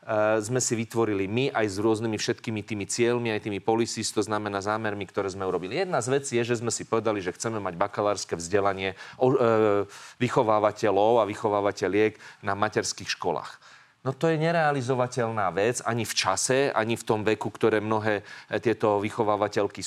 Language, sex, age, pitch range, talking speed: Slovak, male, 30-49, 110-135 Hz, 165 wpm